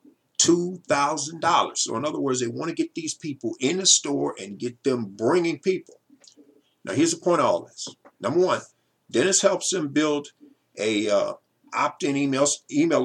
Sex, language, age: male, English, 50-69